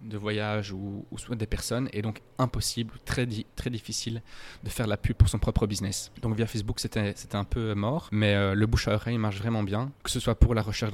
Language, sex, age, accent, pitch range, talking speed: French, male, 20-39, French, 105-120 Hz, 240 wpm